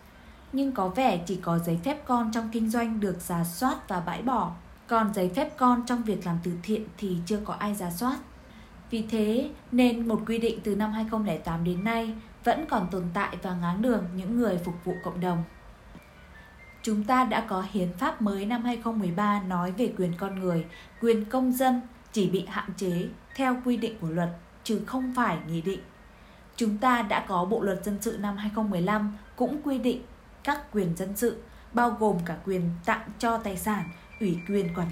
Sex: female